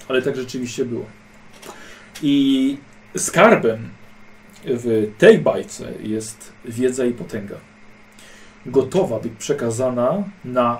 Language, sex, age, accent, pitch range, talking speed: Polish, male, 40-59, native, 120-170 Hz, 95 wpm